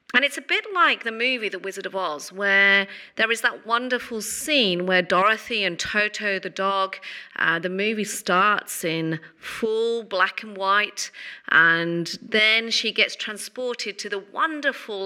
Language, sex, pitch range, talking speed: English, female, 185-245 Hz, 160 wpm